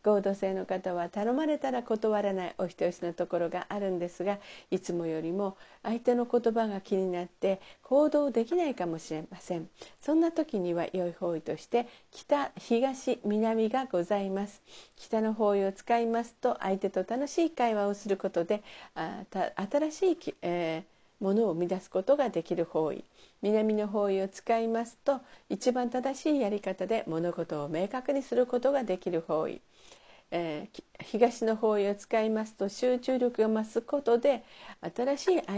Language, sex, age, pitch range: Japanese, female, 50-69, 185-250 Hz